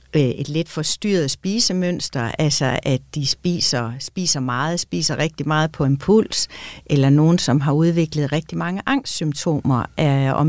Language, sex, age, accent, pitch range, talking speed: Danish, female, 60-79, native, 155-210 Hz, 135 wpm